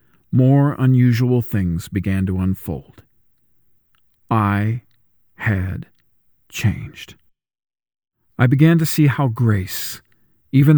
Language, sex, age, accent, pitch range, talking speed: English, male, 40-59, American, 105-140 Hz, 90 wpm